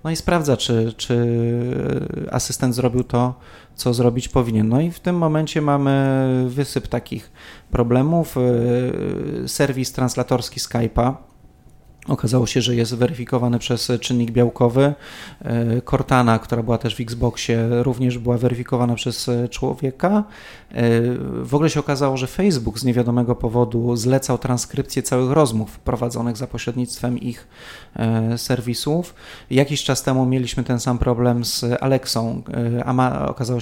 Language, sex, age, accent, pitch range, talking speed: Polish, male, 30-49, native, 120-135 Hz, 125 wpm